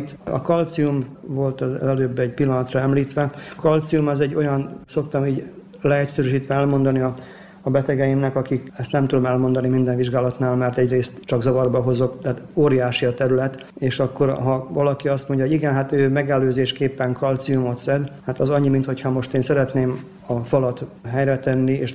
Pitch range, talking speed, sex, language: 130-140 Hz, 165 wpm, male, Hungarian